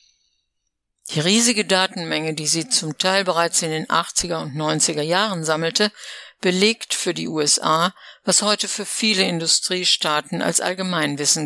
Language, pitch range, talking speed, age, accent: German, 155-200 Hz, 135 wpm, 60-79, German